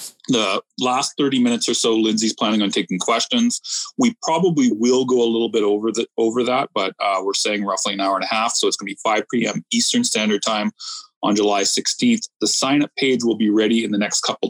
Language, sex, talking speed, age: English, male, 225 wpm, 30-49